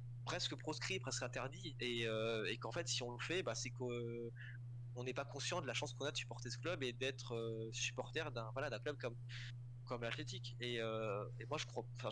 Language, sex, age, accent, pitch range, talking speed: French, male, 20-39, French, 120-125 Hz, 230 wpm